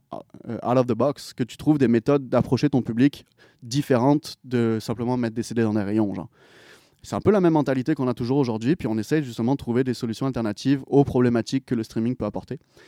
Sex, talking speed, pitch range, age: male, 225 wpm, 110-135 Hz, 20-39